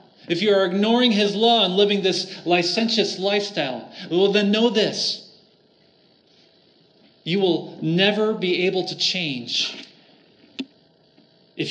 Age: 30-49